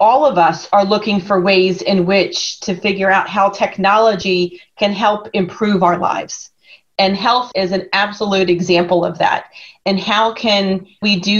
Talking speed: 170 wpm